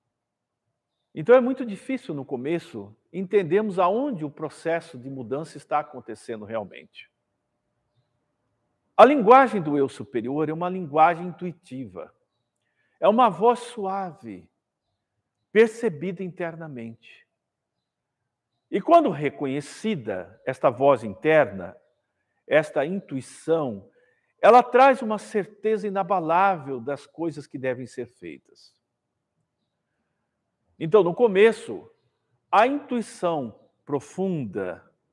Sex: male